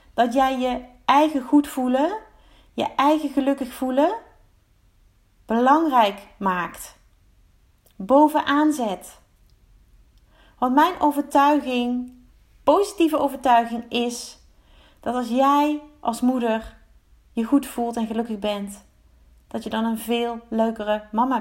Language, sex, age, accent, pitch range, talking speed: Dutch, female, 30-49, Dutch, 215-275 Hz, 105 wpm